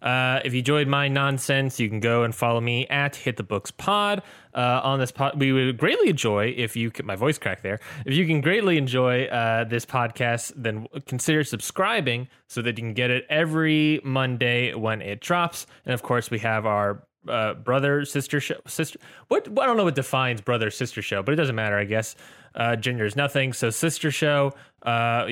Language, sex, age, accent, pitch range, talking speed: English, male, 20-39, American, 115-140 Hz, 205 wpm